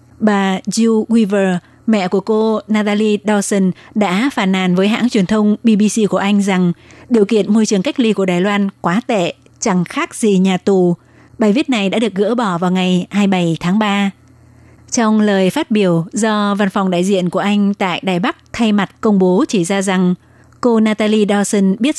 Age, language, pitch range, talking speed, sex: 20-39, Vietnamese, 190-220 Hz, 195 wpm, female